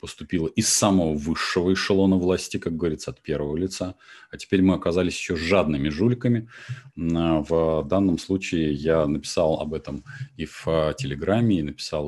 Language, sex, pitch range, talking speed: Russian, male, 80-95 Hz, 150 wpm